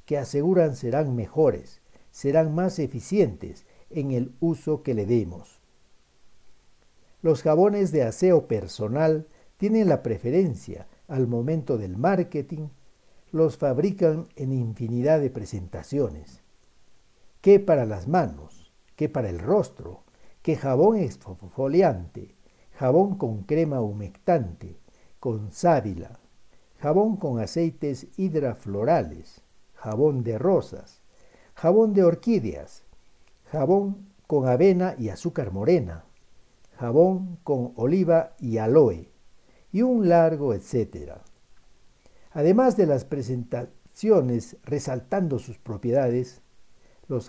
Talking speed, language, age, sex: 105 wpm, Spanish, 60-79, male